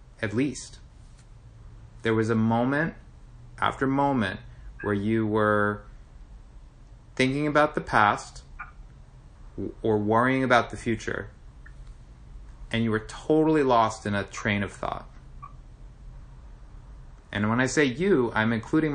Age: 30-49